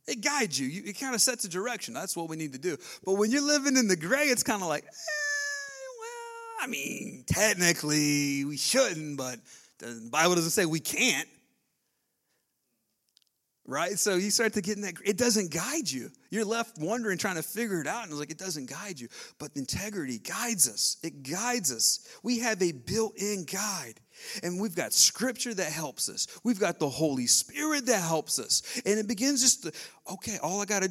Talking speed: 205 wpm